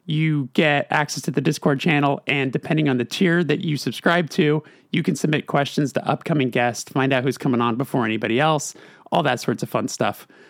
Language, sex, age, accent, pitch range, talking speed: English, male, 30-49, American, 130-170 Hz, 210 wpm